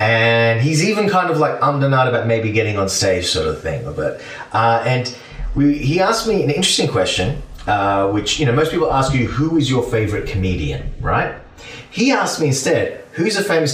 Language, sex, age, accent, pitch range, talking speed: English, male, 30-49, Australian, 105-150 Hz, 205 wpm